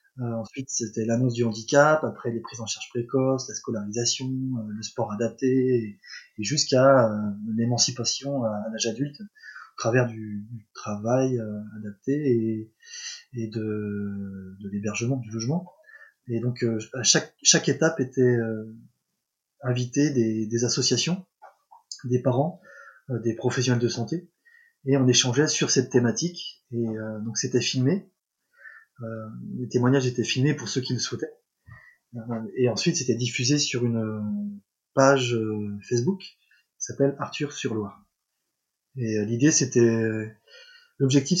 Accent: French